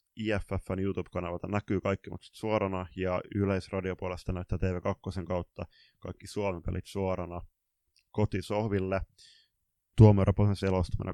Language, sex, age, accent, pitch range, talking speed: Finnish, male, 20-39, native, 95-105 Hz, 100 wpm